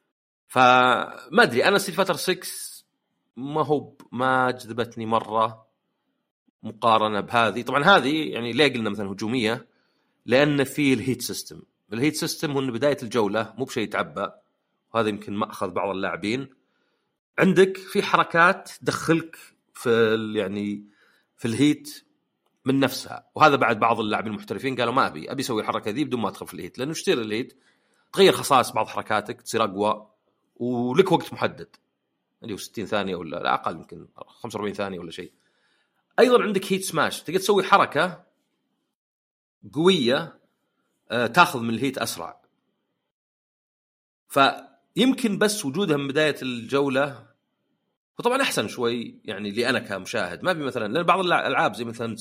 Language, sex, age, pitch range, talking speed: Arabic, male, 40-59, 115-165 Hz, 135 wpm